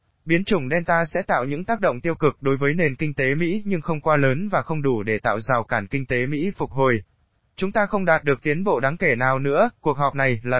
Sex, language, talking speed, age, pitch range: male, Vietnamese, 265 wpm, 20-39, 130-165 Hz